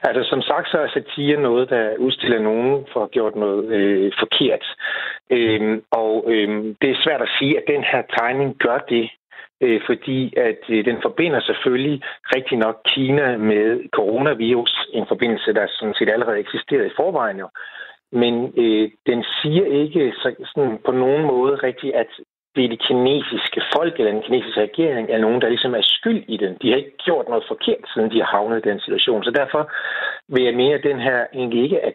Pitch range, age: 115-145 Hz, 60-79